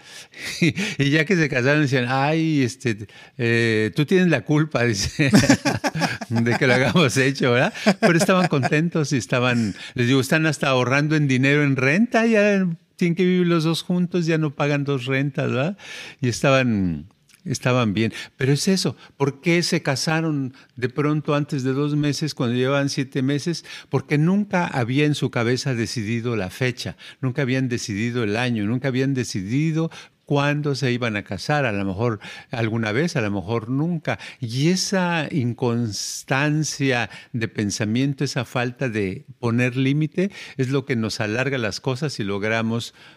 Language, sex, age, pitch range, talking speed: Spanish, male, 50-69, 120-150 Hz, 165 wpm